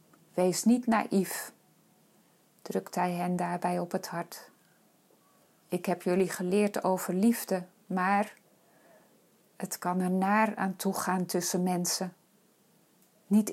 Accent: Dutch